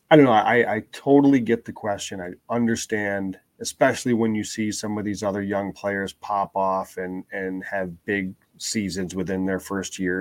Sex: male